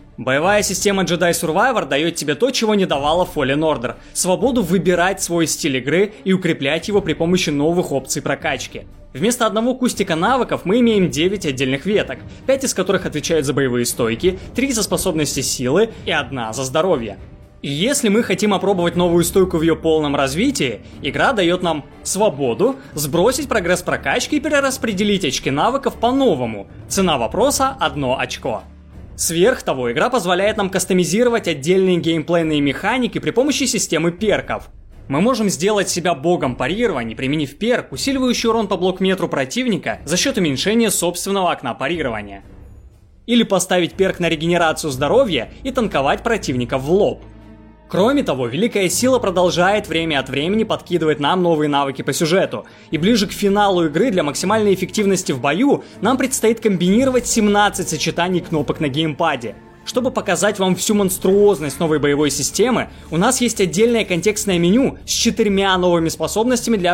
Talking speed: 150 wpm